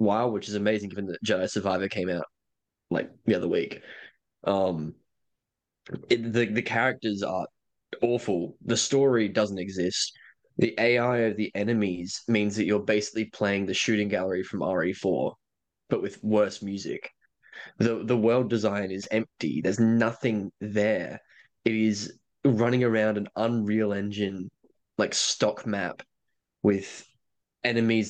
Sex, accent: male, Australian